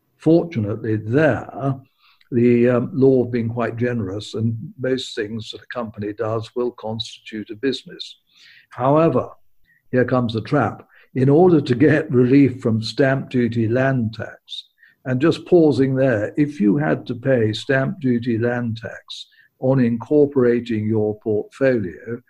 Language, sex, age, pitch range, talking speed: English, male, 60-79, 120-145 Hz, 140 wpm